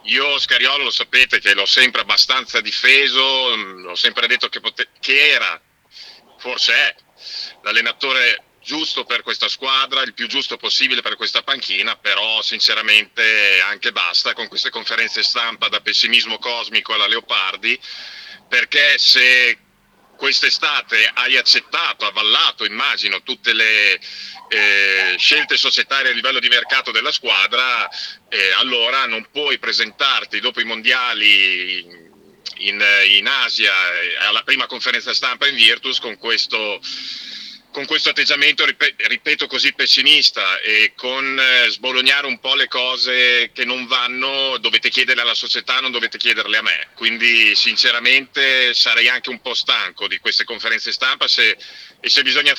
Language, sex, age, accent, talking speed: Italian, male, 40-59, native, 135 wpm